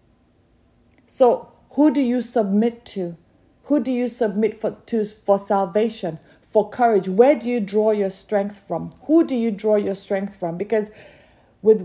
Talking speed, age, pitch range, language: 155 wpm, 40-59, 200-255 Hz, English